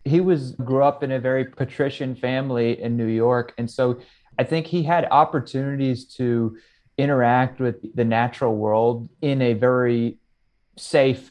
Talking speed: 155 wpm